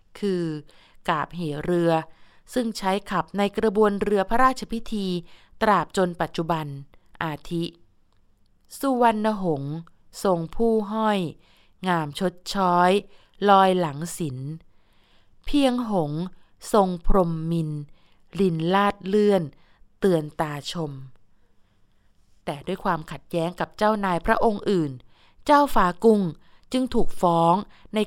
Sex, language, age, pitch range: female, Thai, 20-39, 160-210 Hz